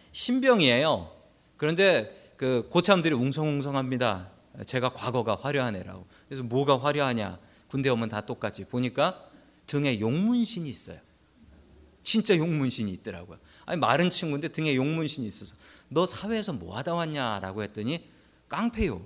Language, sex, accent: Korean, male, native